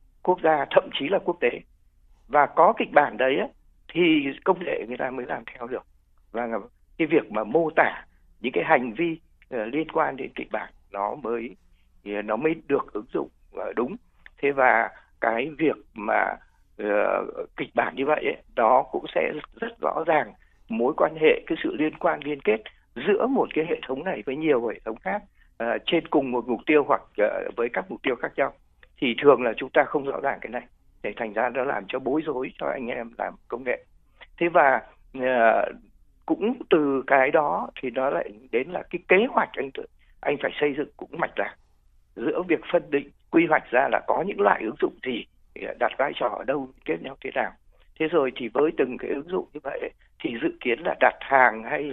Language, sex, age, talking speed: Vietnamese, male, 60-79, 205 wpm